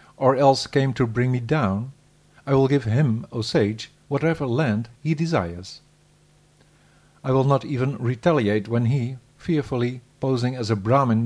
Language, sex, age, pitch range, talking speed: English, male, 50-69, 115-150 Hz, 155 wpm